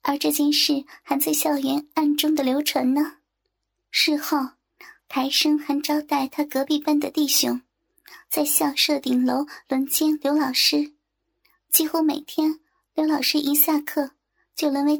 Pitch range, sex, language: 275-310 Hz, male, Chinese